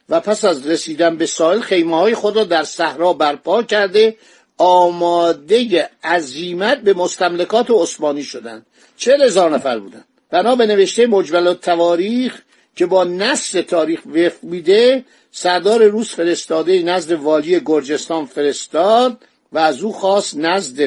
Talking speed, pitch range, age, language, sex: 135 wpm, 165-215 Hz, 50-69, Persian, male